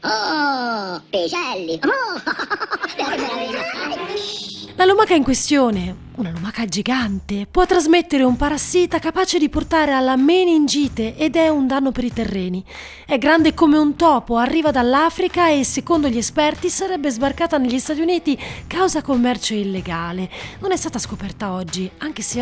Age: 30-49